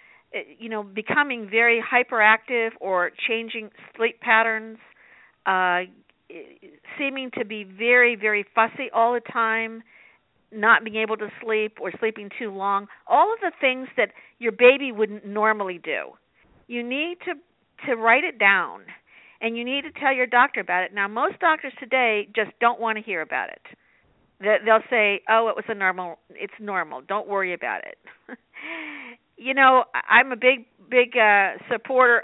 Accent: American